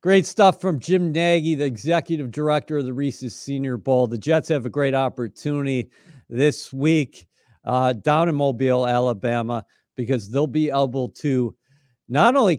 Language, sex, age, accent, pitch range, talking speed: English, male, 50-69, American, 125-150 Hz, 155 wpm